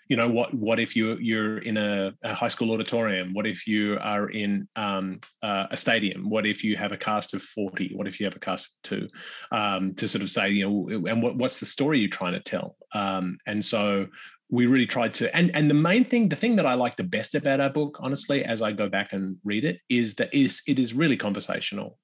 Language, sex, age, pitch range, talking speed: English, male, 30-49, 100-120 Hz, 255 wpm